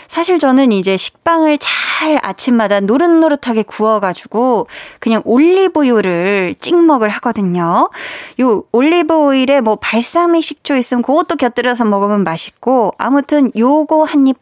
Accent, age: native, 20-39